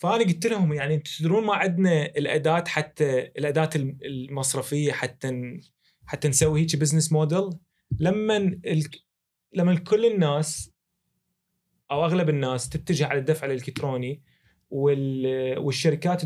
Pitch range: 130-155 Hz